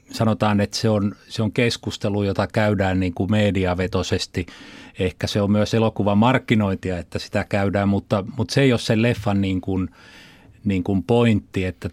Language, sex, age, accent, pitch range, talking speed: Finnish, male, 30-49, native, 100-120 Hz, 165 wpm